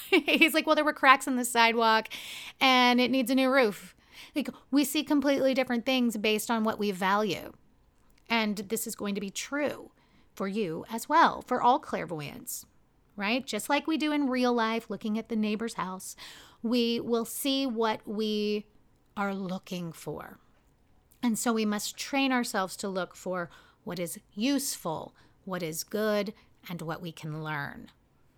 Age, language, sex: 30-49, English, female